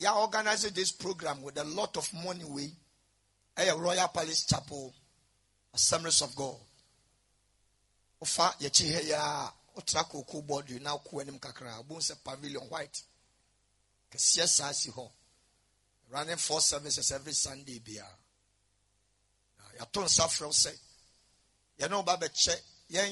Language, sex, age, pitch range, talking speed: English, male, 60-79, 100-170 Hz, 145 wpm